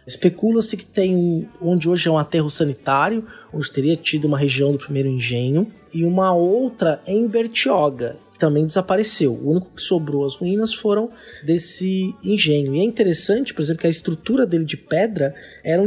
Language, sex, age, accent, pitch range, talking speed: Portuguese, male, 20-39, Brazilian, 150-205 Hz, 180 wpm